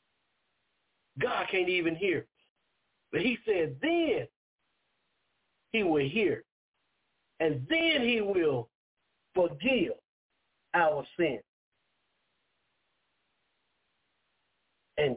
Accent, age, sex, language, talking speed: American, 50-69, male, English, 75 wpm